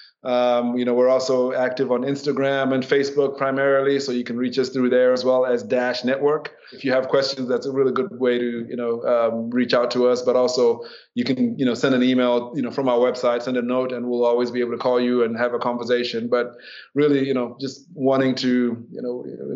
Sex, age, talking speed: male, 20-39, 240 wpm